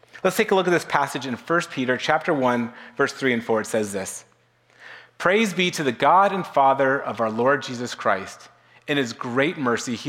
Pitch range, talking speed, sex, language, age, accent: 125-170 Hz, 215 wpm, male, English, 30-49, American